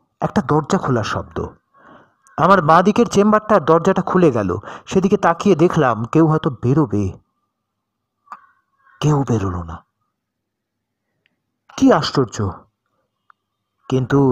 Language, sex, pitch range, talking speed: Bengali, male, 120-195 Hz, 95 wpm